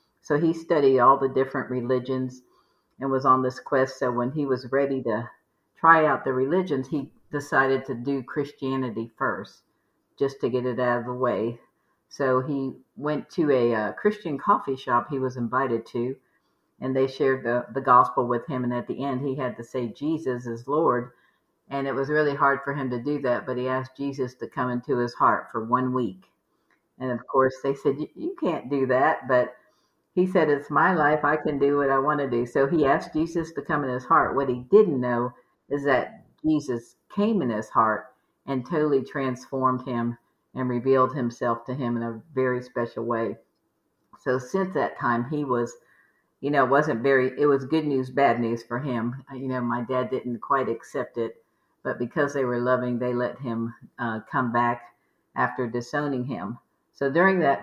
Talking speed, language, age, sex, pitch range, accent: 200 wpm, English, 50-69, female, 125-140 Hz, American